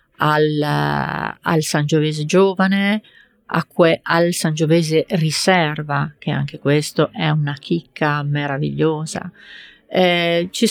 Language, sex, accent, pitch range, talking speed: Italian, female, native, 150-175 Hz, 100 wpm